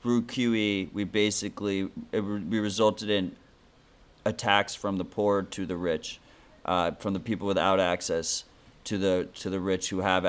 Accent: American